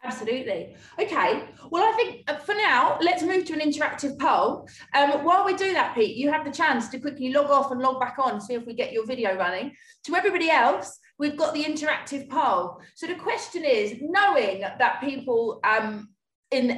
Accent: British